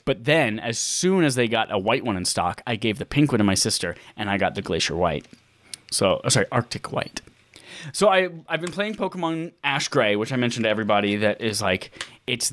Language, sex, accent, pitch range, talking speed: English, male, American, 110-145 Hz, 230 wpm